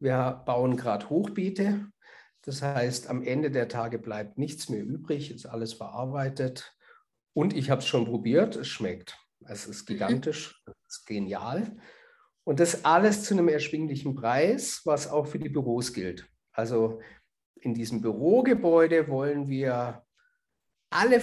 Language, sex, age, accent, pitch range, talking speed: German, male, 50-69, German, 120-150 Hz, 145 wpm